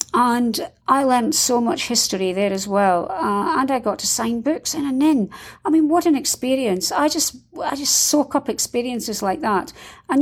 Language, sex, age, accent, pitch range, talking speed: English, female, 50-69, British, 205-300 Hz, 195 wpm